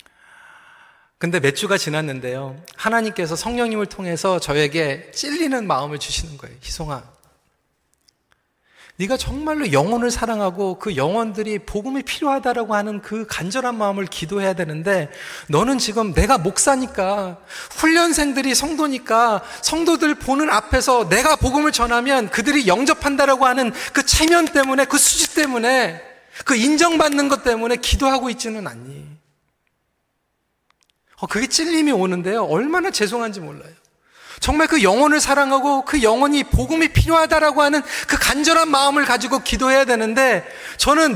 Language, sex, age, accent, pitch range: Korean, male, 30-49, native, 210-290 Hz